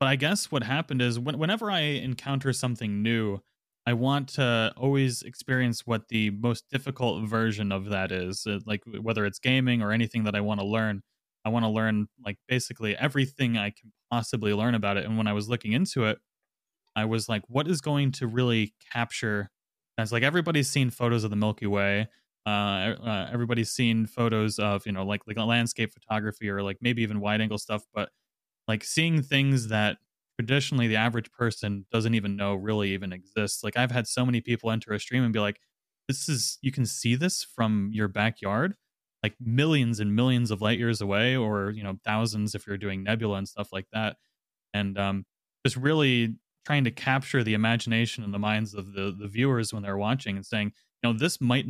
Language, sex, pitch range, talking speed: English, male, 105-125 Hz, 200 wpm